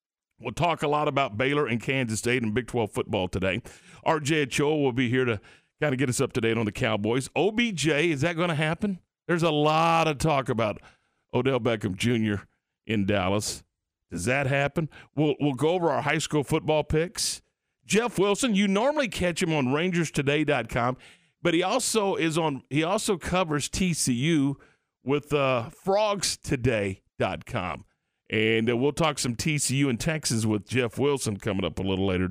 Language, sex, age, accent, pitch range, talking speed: English, male, 50-69, American, 120-160 Hz, 175 wpm